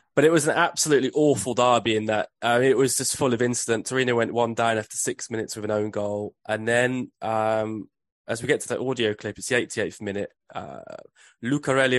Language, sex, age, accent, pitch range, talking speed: English, male, 20-39, British, 110-135 Hz, 215 wpm